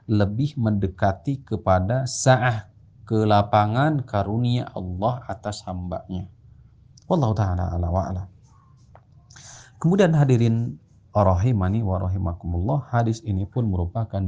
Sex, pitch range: male, 100-130 Hz